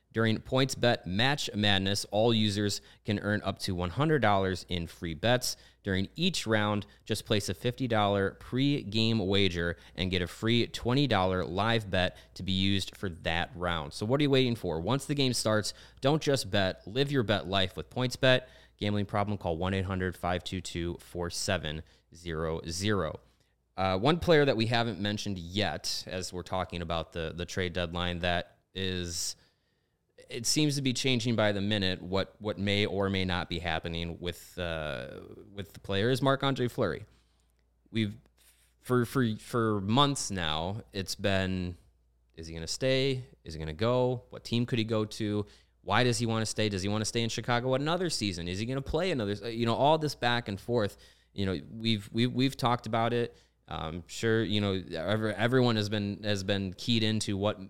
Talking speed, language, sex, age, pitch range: 180 wpm, English, male, 30-49, 90-115 Hz